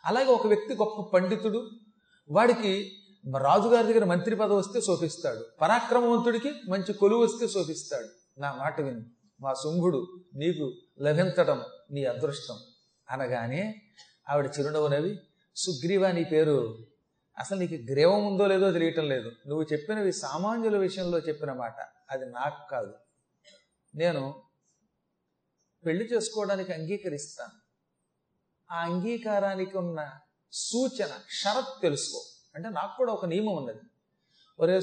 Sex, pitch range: male, 165-205 Hz